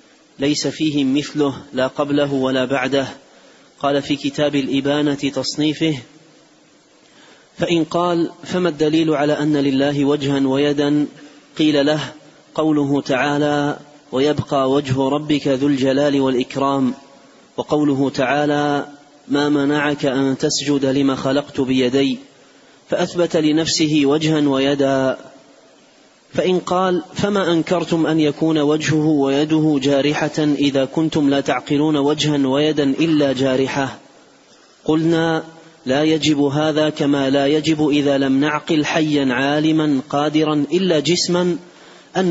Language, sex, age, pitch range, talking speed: Arabic, male, 30-49, 140-160 Hz, 110 wpm